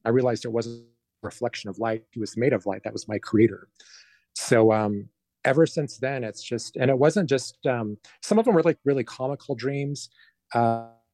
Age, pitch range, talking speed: 30-49, 105-125 Hz, 205 wpm